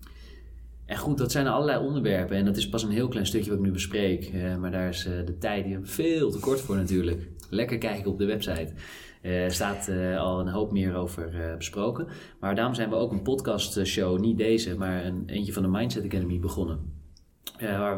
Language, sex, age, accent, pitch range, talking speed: Dutch, male, 20-39, Dutch, 90-105 Hz, 200 wpm